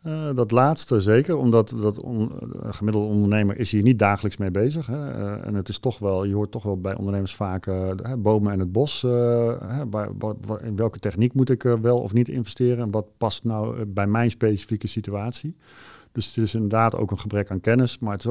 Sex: male